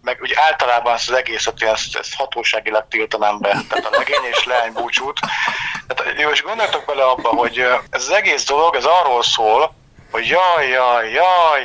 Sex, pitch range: male, 120-160 Hz